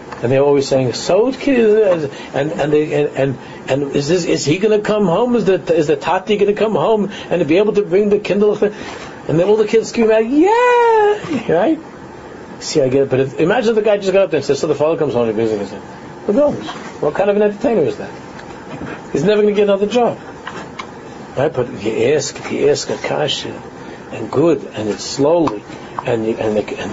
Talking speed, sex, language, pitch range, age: 230 wpm, male, English, 125-210 Hz, 60-79